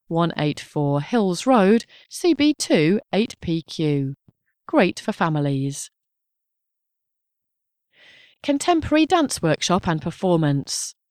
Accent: British